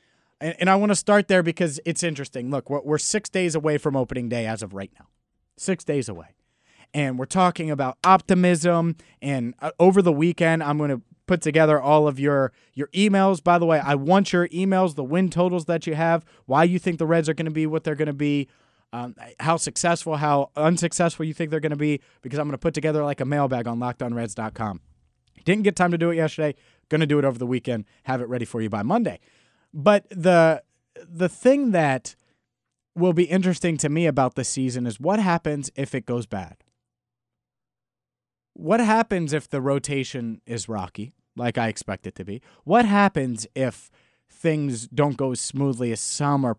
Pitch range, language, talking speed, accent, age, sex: 125-170 Hz, English, 200 wpm, American, 30-49, male